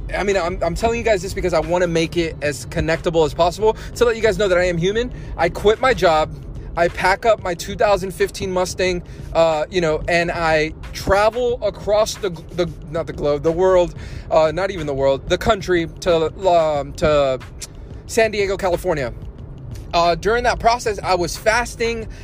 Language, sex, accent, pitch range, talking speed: English, male, American, 160-205 Hz, 195 wpm